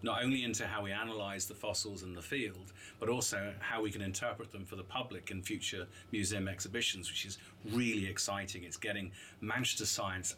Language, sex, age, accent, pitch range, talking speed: English, male, 40-59, British, 100-115 Hz, 190 wpm